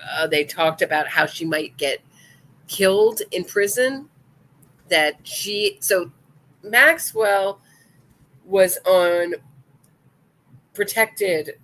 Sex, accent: female, American